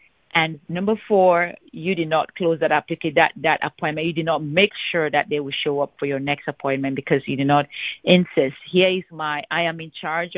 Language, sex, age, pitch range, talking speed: English, female, 30-49, 155-180 Hz, 215 wpm